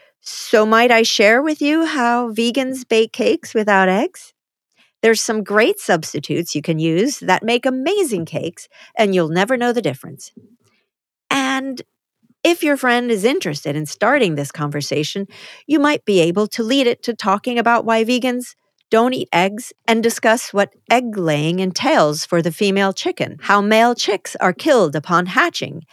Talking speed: 165 wpm